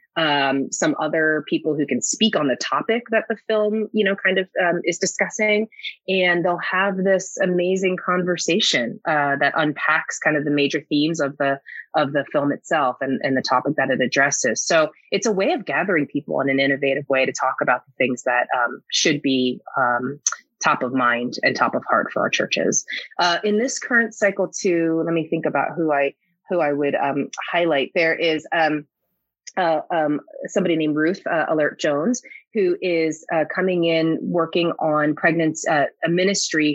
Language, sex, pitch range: English, female, 145-185 Hz